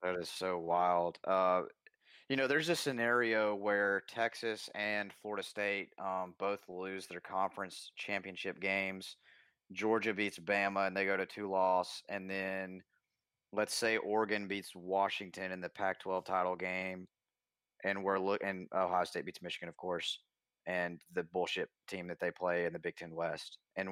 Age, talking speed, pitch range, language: 30-49, 165 wpm, 90-100 Hz, English